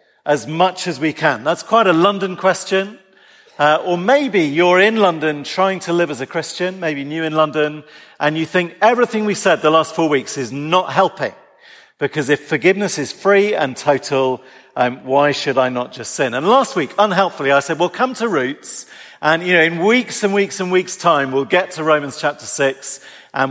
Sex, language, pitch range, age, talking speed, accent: male, English, 140-185 Hz, 40-59, 205 wpm, British